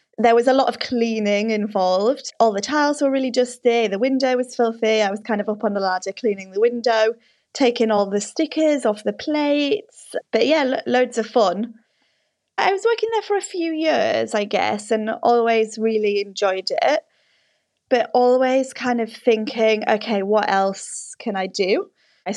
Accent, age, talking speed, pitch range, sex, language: British, 20-39, 180 wpm, 205-250 Hz, female, English